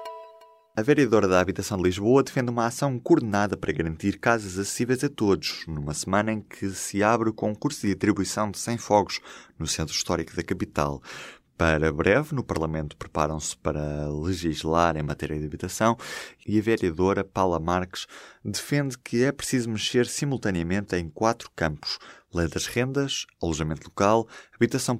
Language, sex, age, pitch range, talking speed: Portuguese, male, 20-39, 90-115 Hz, 155 wpm